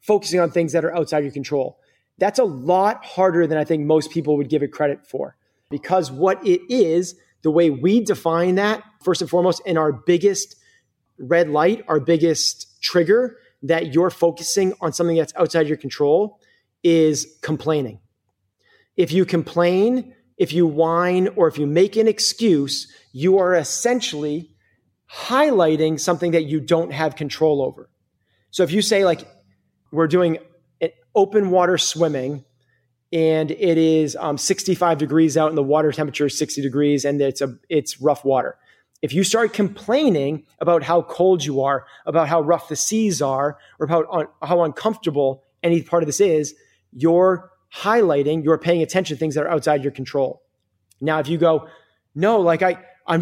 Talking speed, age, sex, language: 175 wpm, 30-49, male, English